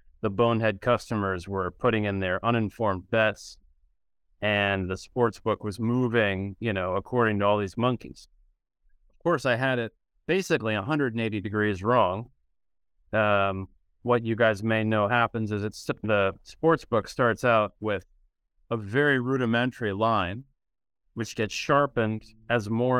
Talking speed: 145 wpm